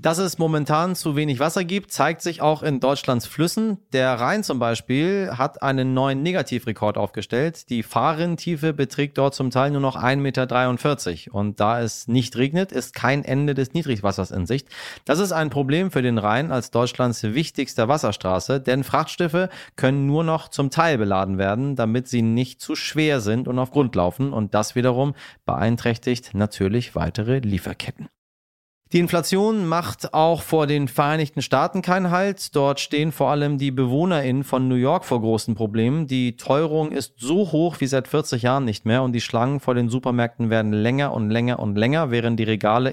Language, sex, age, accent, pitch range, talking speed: German, male, 30-49, German, 115-145 Hz, 180 wpm